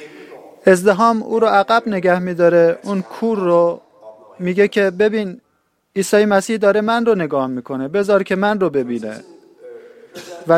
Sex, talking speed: male, 140 wpm